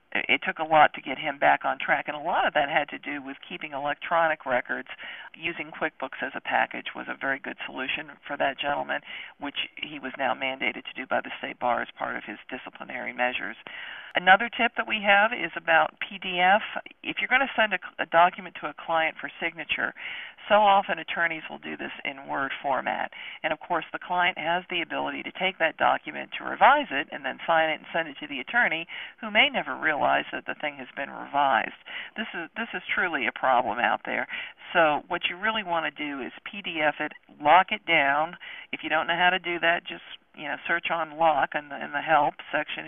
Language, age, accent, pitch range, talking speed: English, 50-69, American, 160-195 Hz, 220 wpm